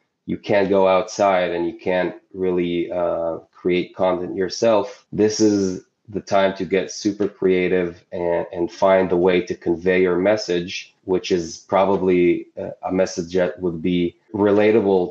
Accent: Canadian